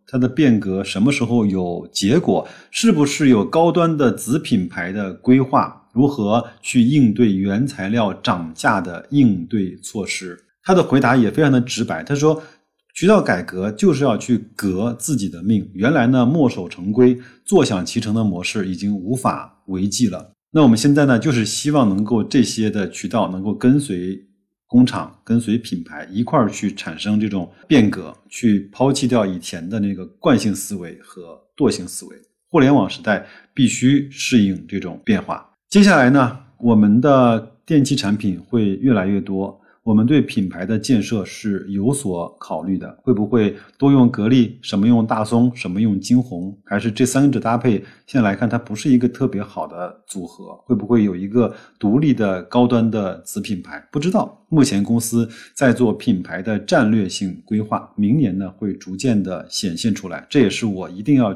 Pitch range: 100-125 Hz